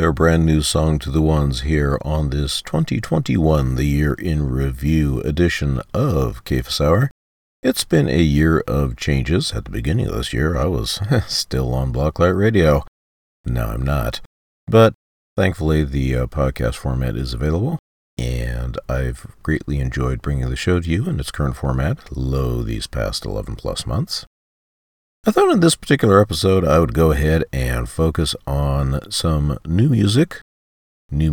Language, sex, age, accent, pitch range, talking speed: English, male, 40-59, American, 65-85 Hz, 160 wpm